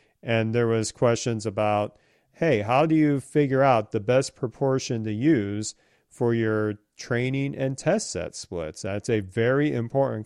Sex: male